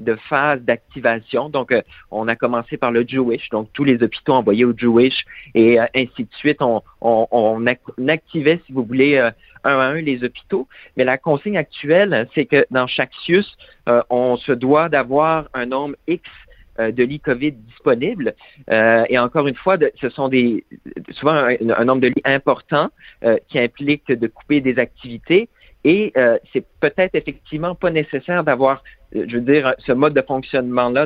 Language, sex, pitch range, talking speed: French, male, 120-150 Hz, 185 wpm